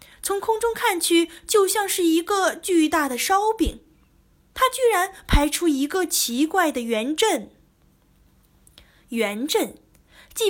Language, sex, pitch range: Chinese, female, 220-335 Hz